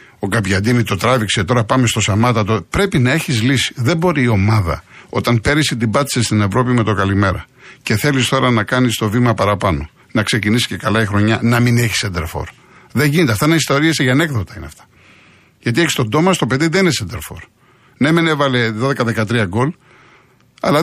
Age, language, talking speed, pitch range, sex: 50-69, Greek, 195 wpm, 110-150 Hz, male